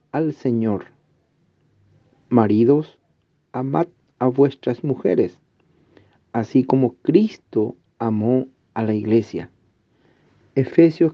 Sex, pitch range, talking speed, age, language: male, 120-150 Hz, 80 wpm, 50-69, Spanish